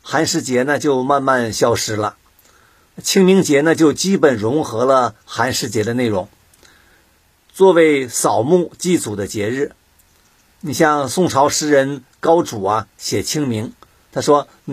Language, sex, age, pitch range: Chinese, male, 50-69, 130-165 Hz